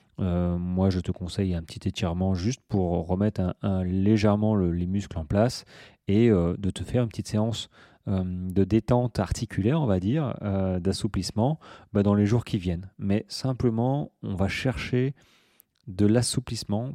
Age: 30-49